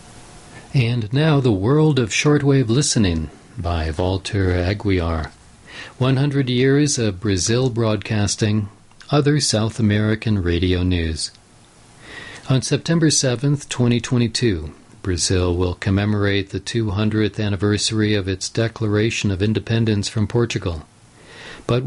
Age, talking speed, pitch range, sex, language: 50-69, 105 wpm, 100-120 Hz, male, English